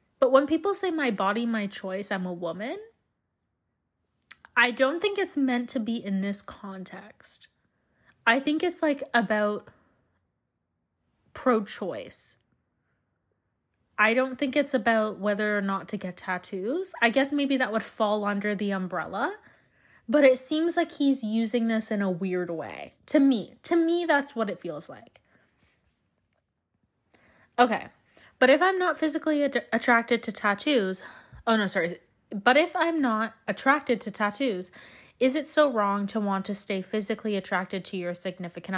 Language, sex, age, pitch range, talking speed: English, female, 20-39, 210-290 Hz, 155 wpm